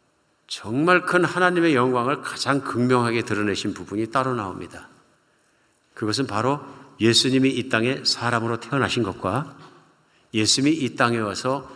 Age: 50-69